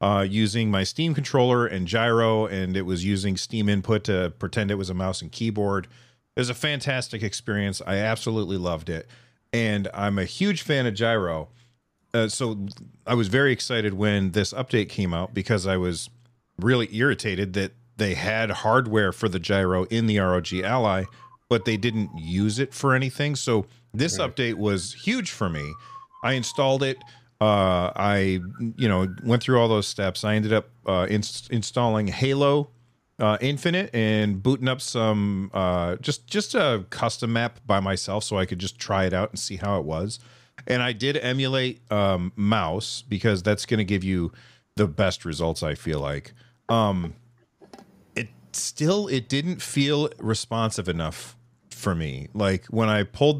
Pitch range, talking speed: 95-125 Hz, 175 wpm